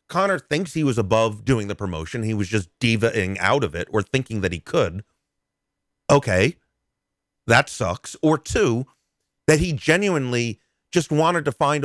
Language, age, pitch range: English, 30-49, 105-150 Hz